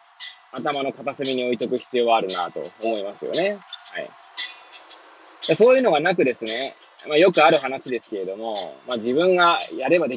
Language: Japanese